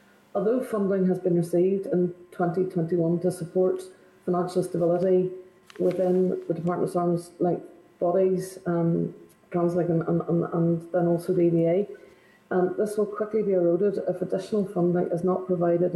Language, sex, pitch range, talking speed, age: English, female, 175-190 Hz, 145 wpm, 30-49